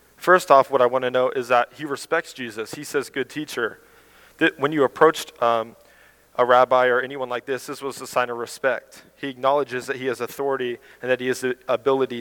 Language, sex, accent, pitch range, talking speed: English, male, American, 120-140 Hz, 215 wpm